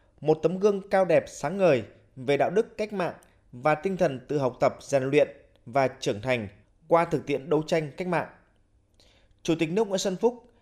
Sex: male